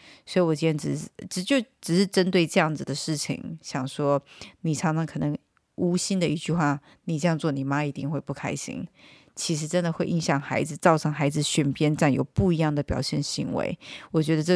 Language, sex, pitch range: Chinese, female, 150-180 Hz